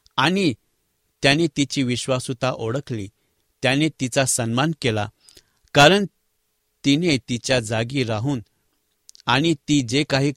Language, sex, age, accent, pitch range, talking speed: English, male, 60-79, Indian, 120-150 Hz, 105 wpm